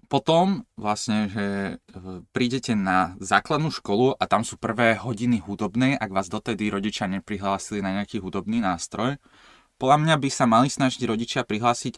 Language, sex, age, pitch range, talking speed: Slovak, male, 20-39, 105-120 Hz, 150 wpm